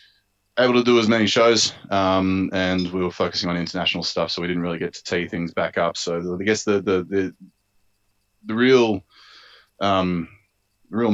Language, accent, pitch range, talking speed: English, Australian, 90-100 Hz, 185 wpm